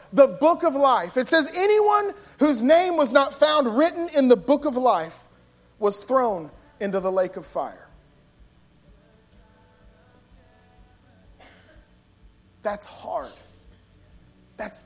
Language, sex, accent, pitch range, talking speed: English, male, American, 195-275 Hz, 115 wpm